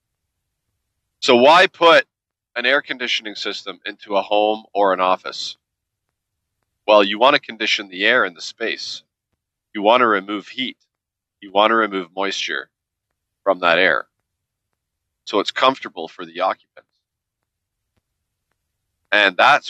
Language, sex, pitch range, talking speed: English, male, 95-110 Hz, 135 wpm